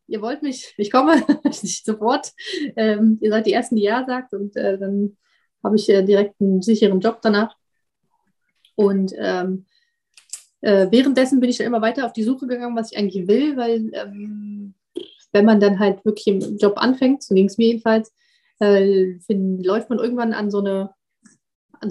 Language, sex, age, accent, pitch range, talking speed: German, female, 30-49, German, 205-260 Hz, 185 wpm